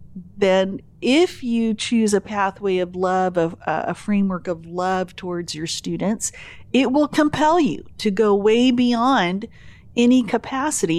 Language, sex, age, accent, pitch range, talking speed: English, female, 40-59, American, 195-250 Hz, 145 wpm